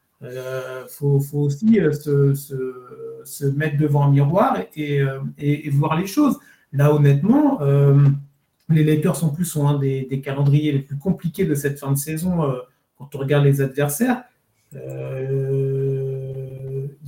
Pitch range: 140-185 Hz